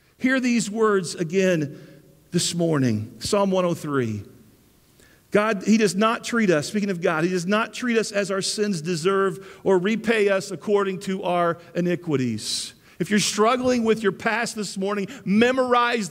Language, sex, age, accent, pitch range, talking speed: English, male, 50-69, American, 195-240 Hz, 155 wpm